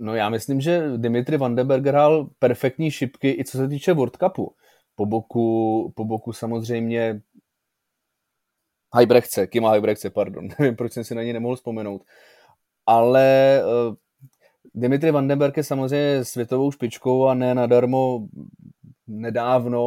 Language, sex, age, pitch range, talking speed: Czech, male, 20-39, 120-145 Hz, 130 wpm